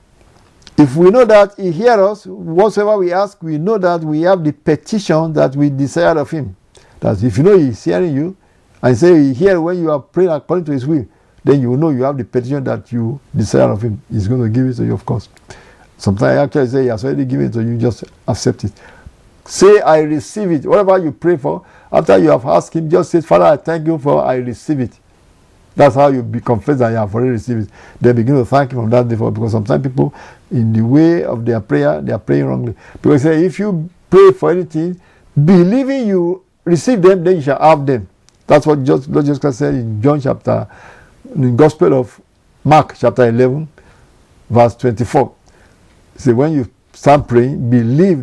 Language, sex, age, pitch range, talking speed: English, male, 60-79, 120-165 Hz, 215 wpm